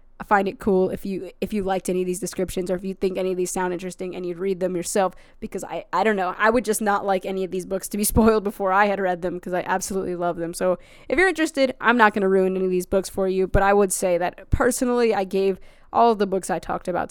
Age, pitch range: 20-39, 185-215 Hz